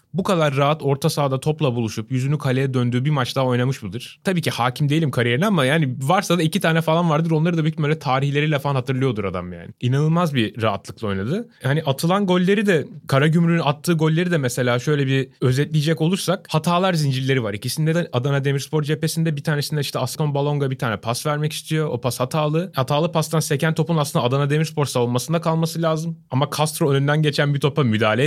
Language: Turkish